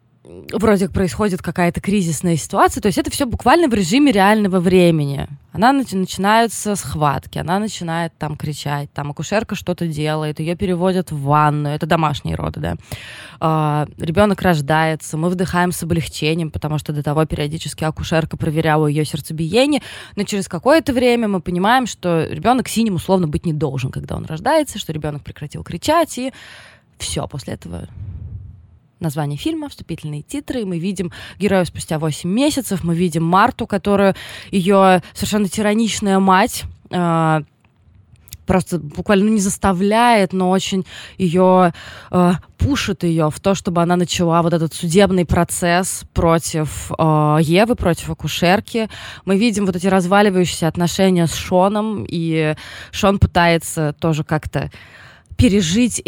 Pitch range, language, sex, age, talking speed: 155-200 Hz, Russian, female, 20-39, 140 wpm